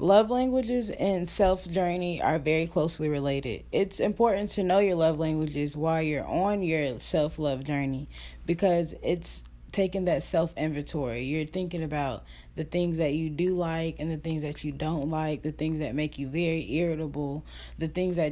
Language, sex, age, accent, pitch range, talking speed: English, female, 10-29, American, 145-175 Hz, 180 wpm